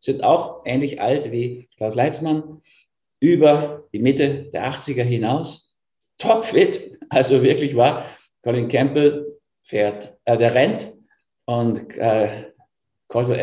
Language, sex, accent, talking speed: German, male, German, 110 wpm